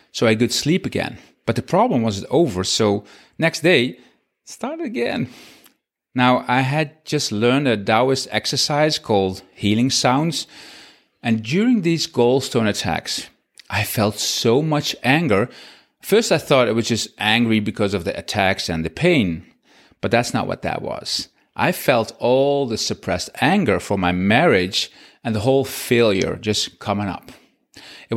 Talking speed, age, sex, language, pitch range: 160 wpm, 30-49, male, English, 105-145 Hz